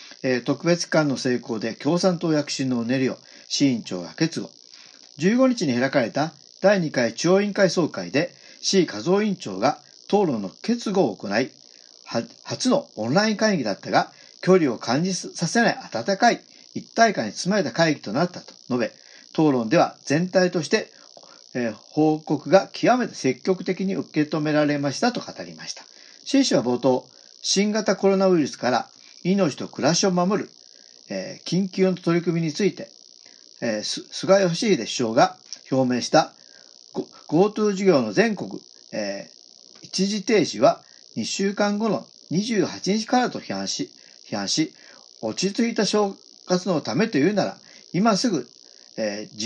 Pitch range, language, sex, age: 150-200 Hz, Japanese, male, 50-69